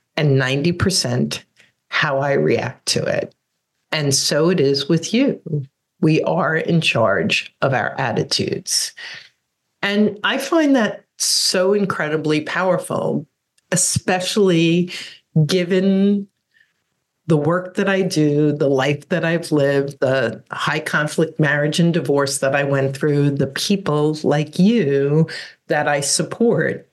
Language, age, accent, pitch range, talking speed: English, 50-69, American, 140-185 Hz, 125 wpm